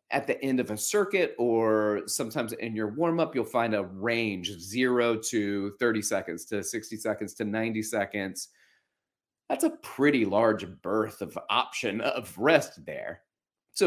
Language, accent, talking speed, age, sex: English, American, 160 wpm, 30-49, male